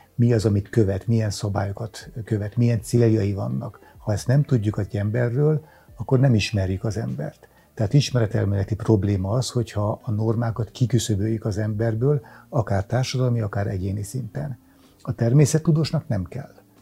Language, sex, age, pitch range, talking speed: Hungarian, male, 60-79, 105-125 Hz, 145 wpm